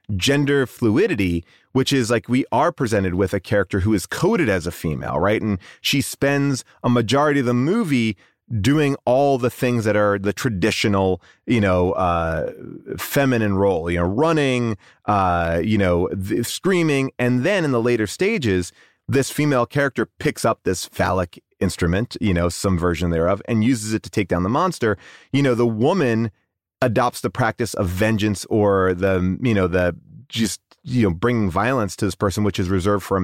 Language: English